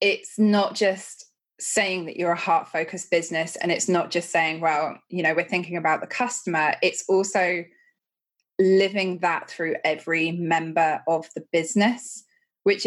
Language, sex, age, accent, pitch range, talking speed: English, female, 20-39, British, 165-200 Hz, 160 wpm